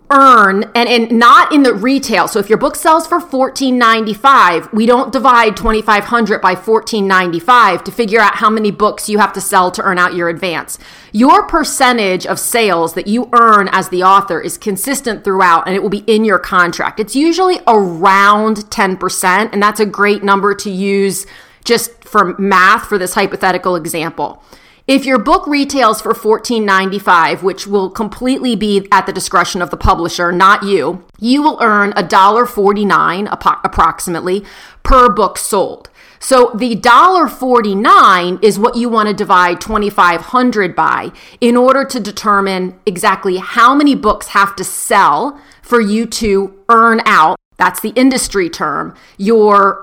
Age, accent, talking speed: 30-49, American, 160 wpm